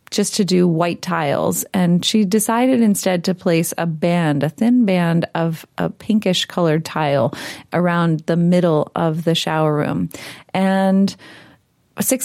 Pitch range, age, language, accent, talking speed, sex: 175-215 Hz, 30-49, English, American, 145 wpm, female